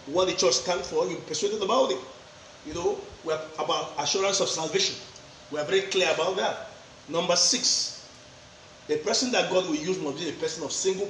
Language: English